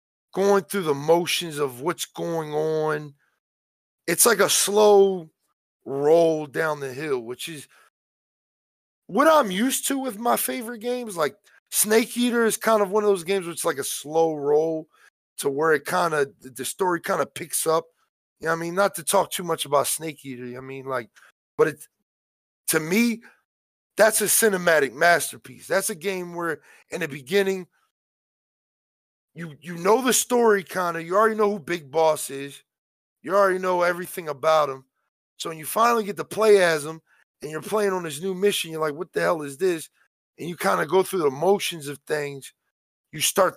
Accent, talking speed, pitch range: American, 190 wpm, 150-200 Hz